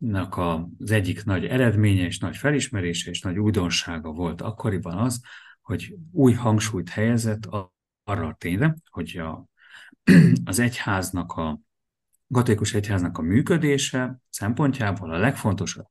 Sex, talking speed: male, 120 wpm